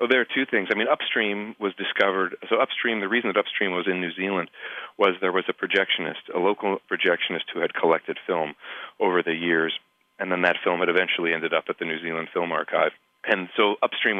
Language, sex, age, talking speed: English, male, 40-59, 220 wpm